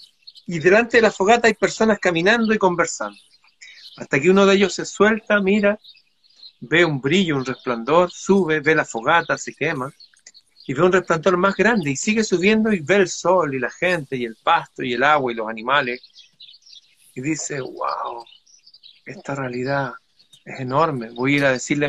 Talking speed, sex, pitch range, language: 180 wpm, male, 140-195 Hz, Spanish